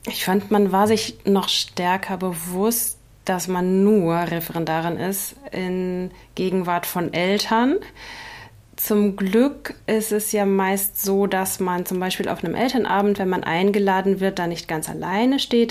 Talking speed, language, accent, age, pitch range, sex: 155 wpm, German, German, 30-49, 185-210 Hz, female